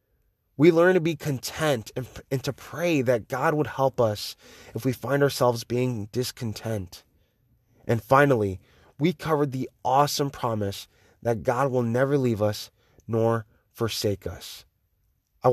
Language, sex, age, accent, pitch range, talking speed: English, male, 20-39, American, 105-145 Hz, 140 wpm